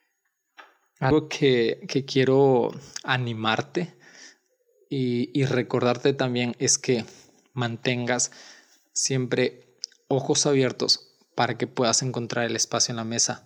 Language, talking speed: Spanish, 105 wpm